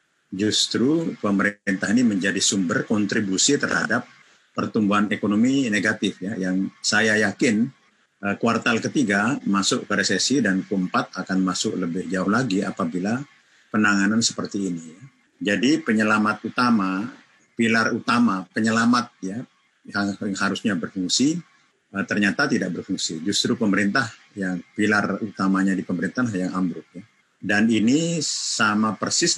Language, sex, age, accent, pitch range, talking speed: Indonesian, male, 50-69, native, 95-120 Hz, 115 wpm